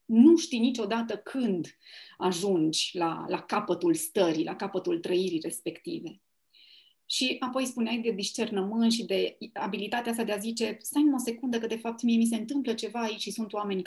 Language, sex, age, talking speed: Romanian, female, 30-49, 175 wpm